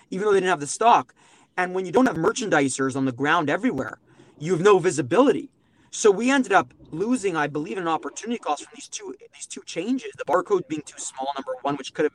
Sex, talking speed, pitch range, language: male, 230 wpm, 145-215 Hz, English